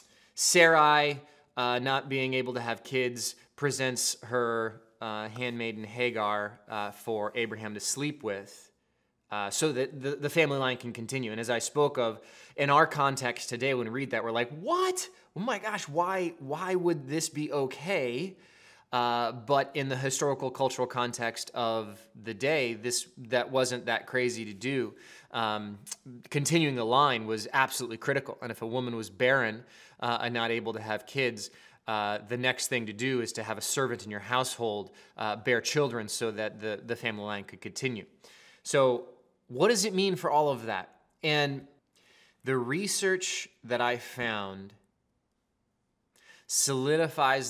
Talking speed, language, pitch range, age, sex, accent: 165 wpm, English, 115-140 Hz, 20-39, male, American